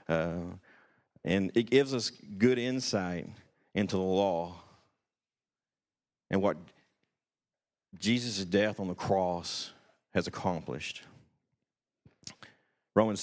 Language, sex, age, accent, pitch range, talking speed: English, male, 50-69, American, 90-110 Hz, 90 wpm